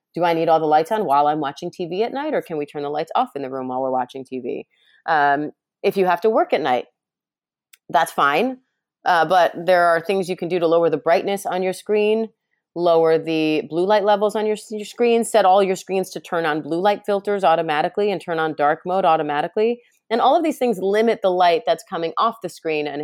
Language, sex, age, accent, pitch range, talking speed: English, female, 30-49, American, 160-215 Hz, 240 wpm